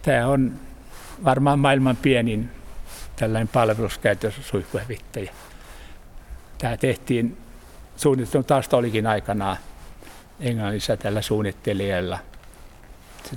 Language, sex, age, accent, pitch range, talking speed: Finnish, male, 60-79, native, 105-125 Hz, 70 wpm